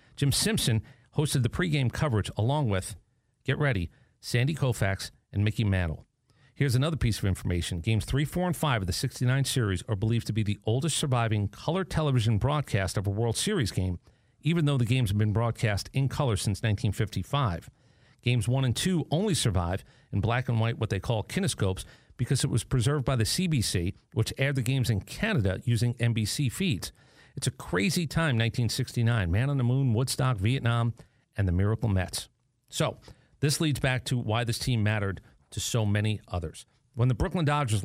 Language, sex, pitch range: English, male, 105-135 Hz